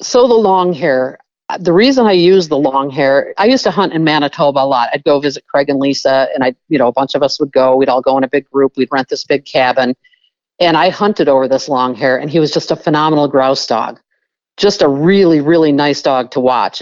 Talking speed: 250 wpm